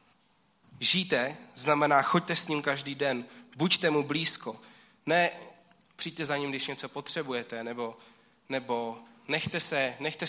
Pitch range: 135-170 Hz